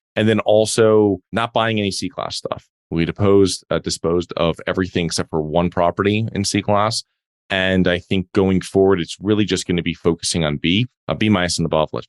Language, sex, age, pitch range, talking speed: English, male, 20-39, 85-105 Hz, 205 wpm